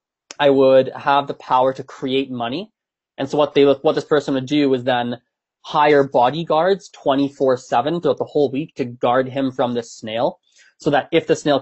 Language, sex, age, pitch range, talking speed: English, male, 20-39, 130-185 Hz, 190 wpm